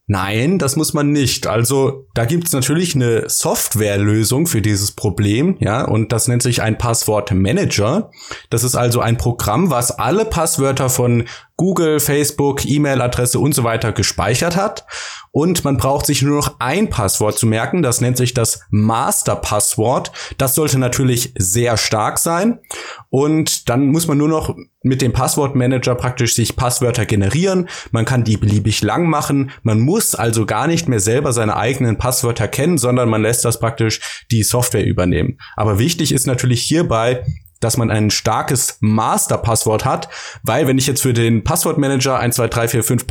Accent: German